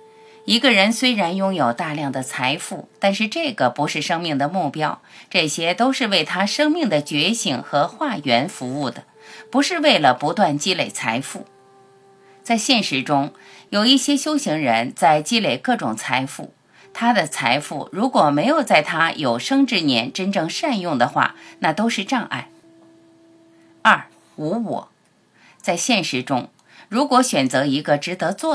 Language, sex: Chinese, female